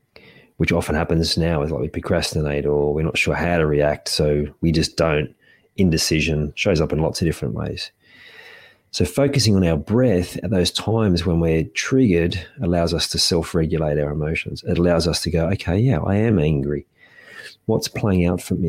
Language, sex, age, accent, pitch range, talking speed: English, male, 30-49, Australian, 80-95 Hz, 190 wpm